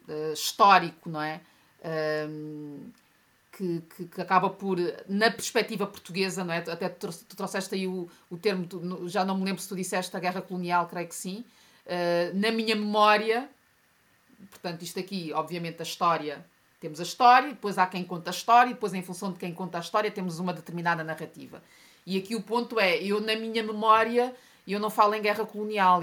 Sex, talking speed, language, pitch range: female, 180 wpm, Portuguese, 175-215 Hz